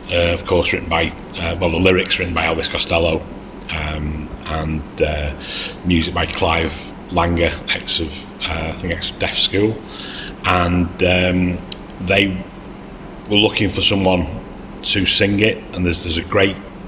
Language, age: English, 40-59